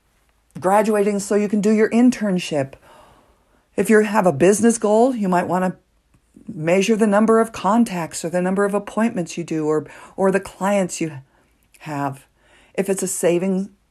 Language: English